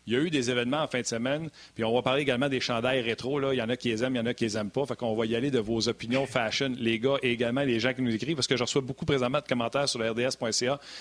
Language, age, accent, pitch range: French, 40-59, Canadian, 120-155 Hz